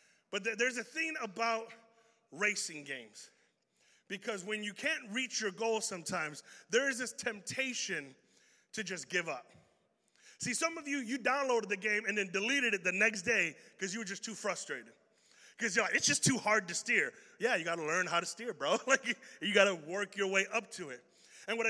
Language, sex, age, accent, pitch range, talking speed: English, male, 30-49, American, 195-245 Hz, 205 wpm